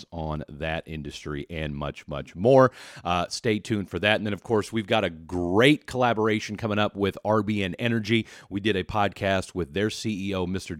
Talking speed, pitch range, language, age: 190 wpm, 95-125 Hz, English, 40-59